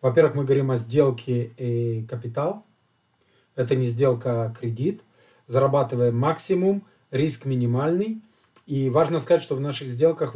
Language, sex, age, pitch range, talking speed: Russian, male, 40-59, 120-150 Hz, 120 wpm